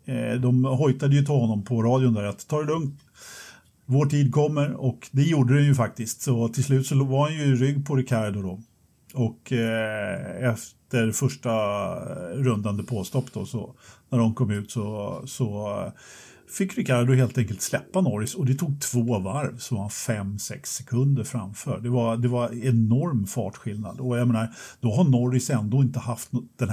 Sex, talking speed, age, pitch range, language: male, 180 wpm, 50-69, 115-140 Hz, Swedish